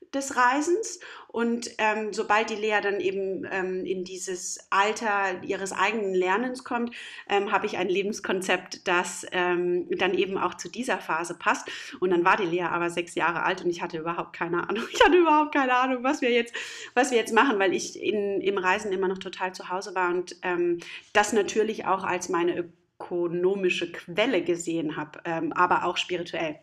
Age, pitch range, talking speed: 30-49, 185-235 Hz, 190 wpm